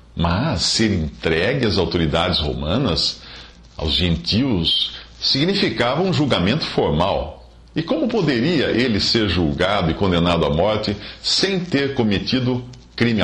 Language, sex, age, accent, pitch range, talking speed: English, male, 50-69, Brazilian, 80-120 Hz, 120 wpm